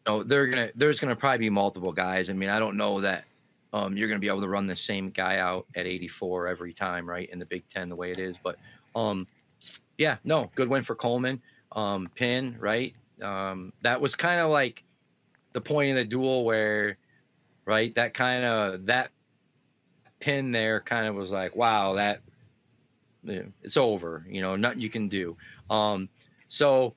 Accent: American